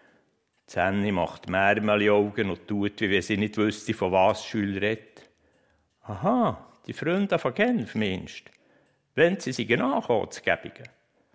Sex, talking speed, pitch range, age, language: male, 145 wpm, 105-145 Hz, 60-79, German